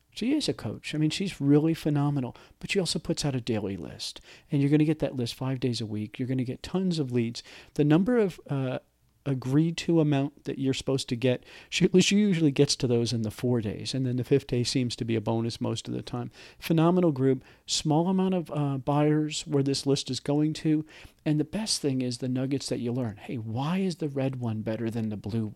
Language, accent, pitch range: English, American, 120-150 Hz